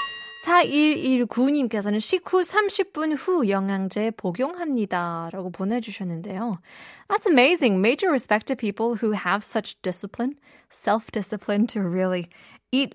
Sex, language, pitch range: female, Korean, 190-260 Hz